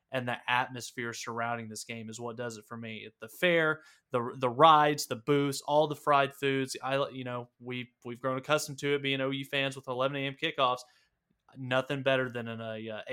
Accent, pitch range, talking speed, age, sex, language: American, 120-140 Hz, 205 wpm, 20-39, male, English